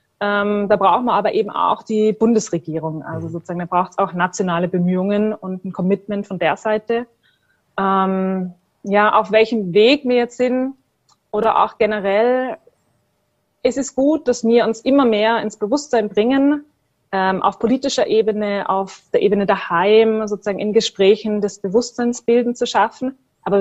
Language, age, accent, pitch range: German, 20-39, German, 195-230 Hz